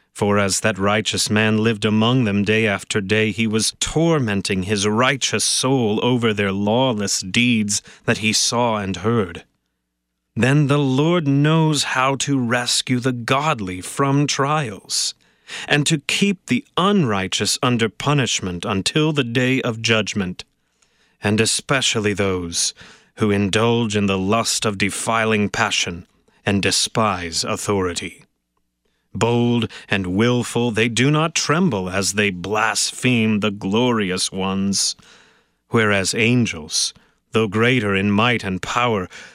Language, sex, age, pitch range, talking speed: English, male, 30-49, 100-130 Hz, 130 wpm